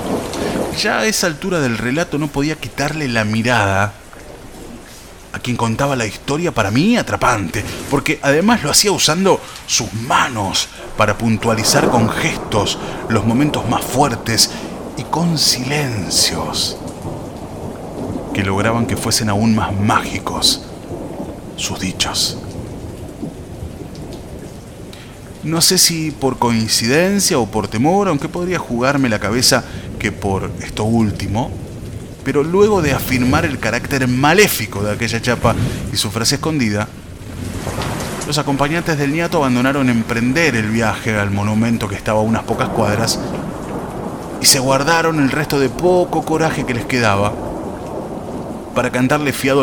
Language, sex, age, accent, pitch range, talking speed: Spanish, male, 30-49, Argentinian, 110-145 Hz, 130 wpm